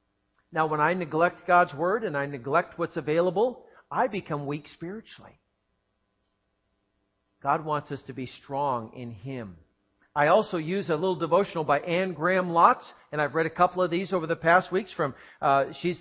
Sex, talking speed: male, 175 wpm